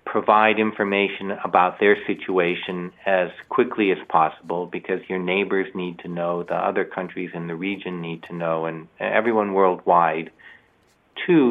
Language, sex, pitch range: Korean, male, 90-105 Hz